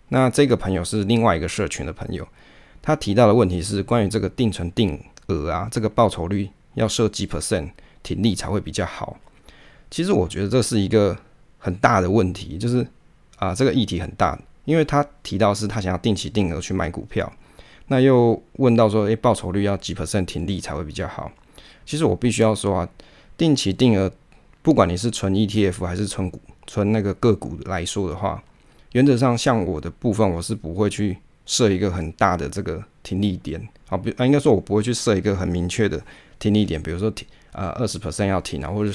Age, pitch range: 20-39, 95-115 Hz